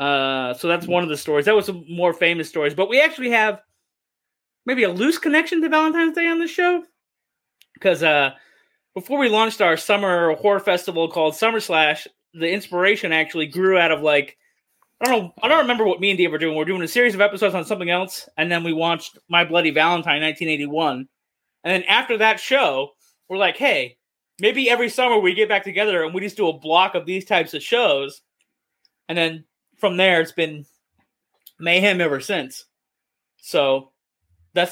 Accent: American